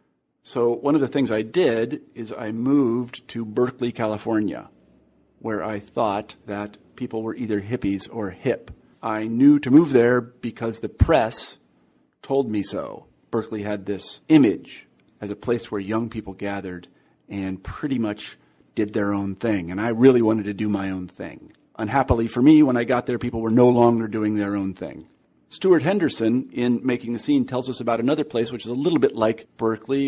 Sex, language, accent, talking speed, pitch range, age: male, English, American, 190 wpm, 105-120 Hz, 40-59